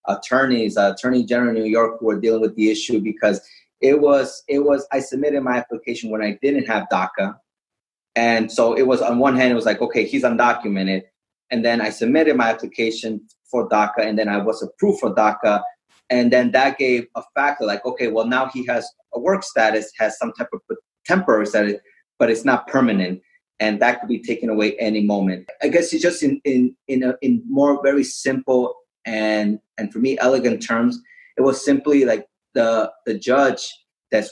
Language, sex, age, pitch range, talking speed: English, male, 30-49, 110-135 Hz, 200 wpm